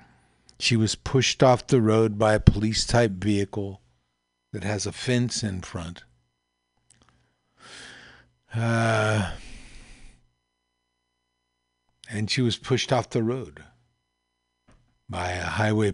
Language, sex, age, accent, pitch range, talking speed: English, male, 50-69, American, 75-120 Hz, 100 wpm